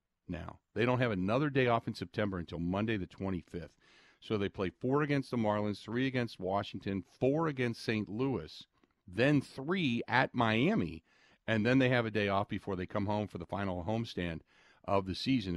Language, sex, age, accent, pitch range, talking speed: English, male, 50-69, American, 90-120 Hz, 190 wpm